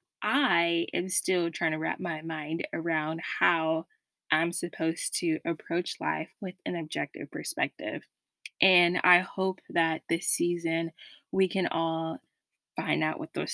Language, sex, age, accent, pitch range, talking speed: English, female, 20-39, American, 165-230 Hz, 140 wpm